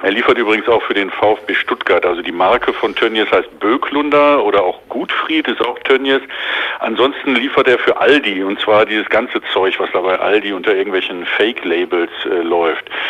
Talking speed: 190 wpm